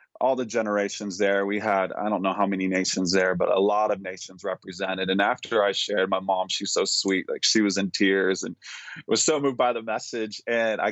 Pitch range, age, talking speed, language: 95-110 Hz, 20-39, 230 wpm, English